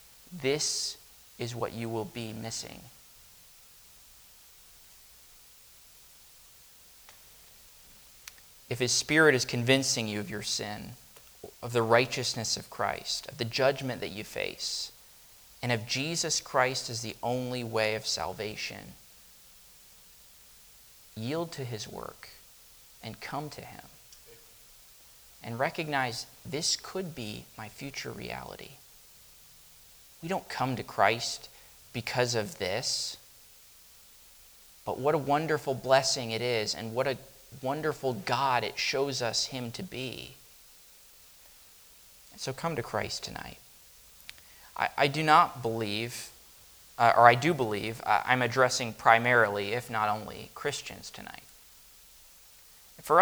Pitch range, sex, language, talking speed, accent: 110-135 Hz, male, English, 115 wpm, American